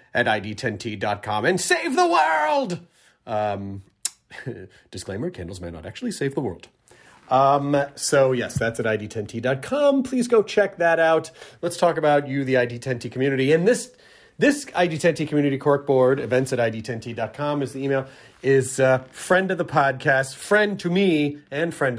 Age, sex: 30-49, male